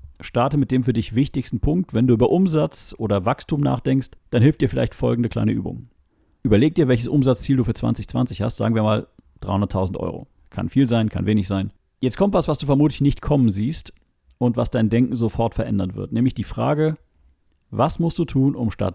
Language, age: German, 40-59